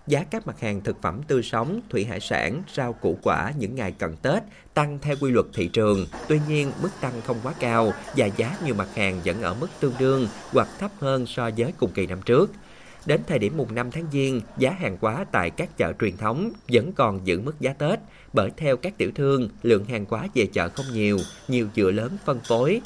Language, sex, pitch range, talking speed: Vietnamese, male, 105-145 Hz, 230 wpm